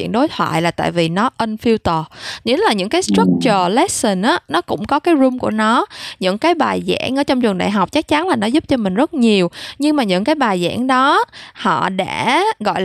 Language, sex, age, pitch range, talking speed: Vietnamese, female, 20-39, 200-275 Hz, 230 wpm